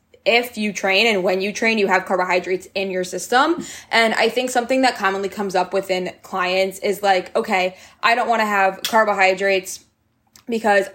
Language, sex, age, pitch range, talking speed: English, female, 20-39, 185-215 Hz, 180 wpm